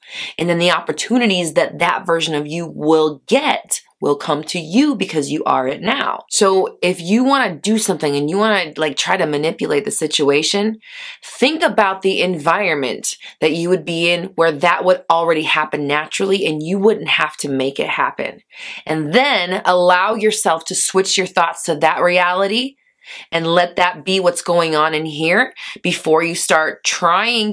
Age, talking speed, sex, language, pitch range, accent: 20-39, 185 wpm, female, English, 155-205 Hz, American